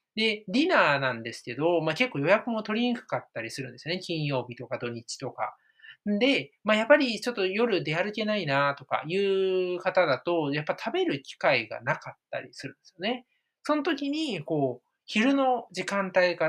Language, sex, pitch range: Japanese, male, 135-220 Hz